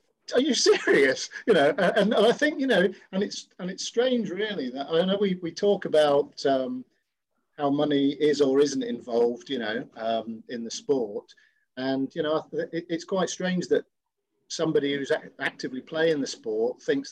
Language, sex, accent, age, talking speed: English, male, British, 40-59, 175 wpm